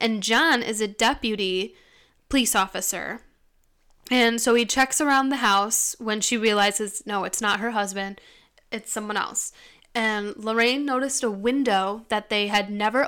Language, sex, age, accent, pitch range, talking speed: English, female, 10-29, American, 210-255 Hz, 155 wpm